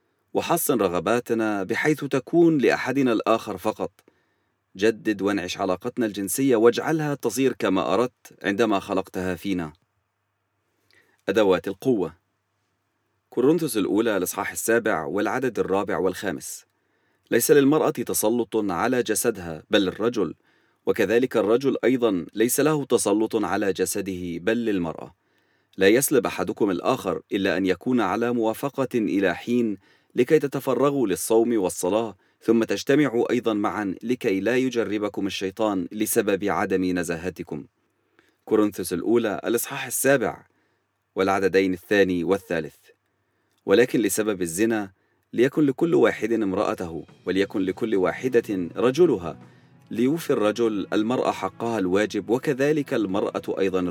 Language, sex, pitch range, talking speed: English, male, 95-120 Hz, 105 wpm